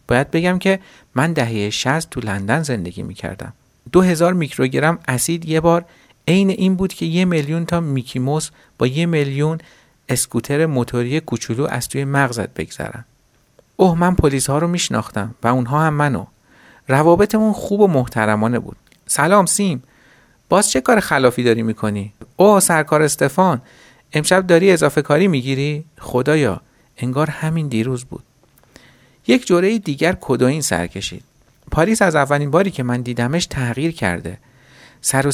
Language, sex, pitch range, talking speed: Persian, male, 125-170 Hz, 150 wpm